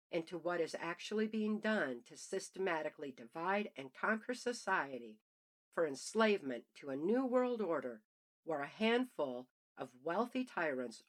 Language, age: English, 50-69